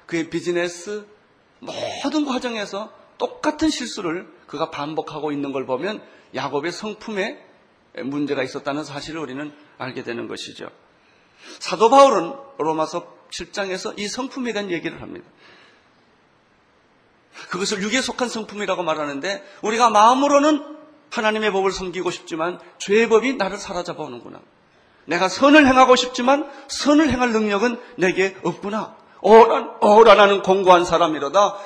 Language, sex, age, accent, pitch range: Korean, male, 40-59, native, 160-230 Hz